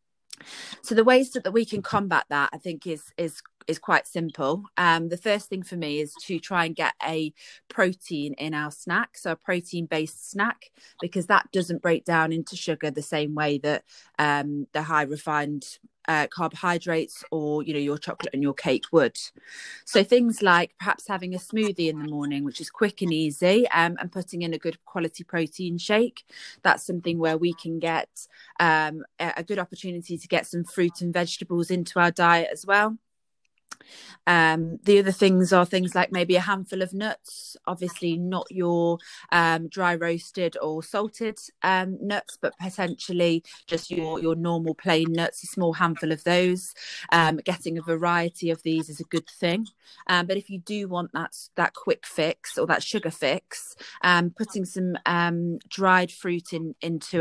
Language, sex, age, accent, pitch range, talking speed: English, female, 20-39, British, 165-185 Hz, 180 wpm